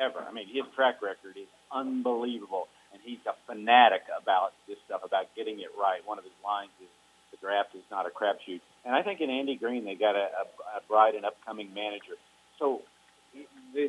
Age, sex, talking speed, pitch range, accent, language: 50-69, male, 205 wpm, 100-140 Hz, American, English